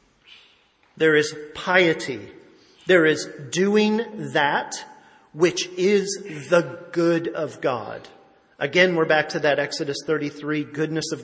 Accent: American